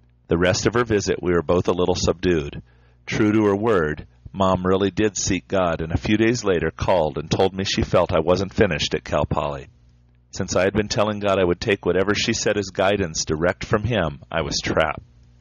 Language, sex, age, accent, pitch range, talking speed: English, male, 40-59, American, 80-105 Hz, 220 wpm